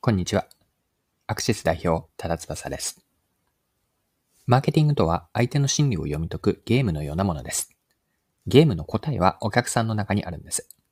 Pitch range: 90-125 Hz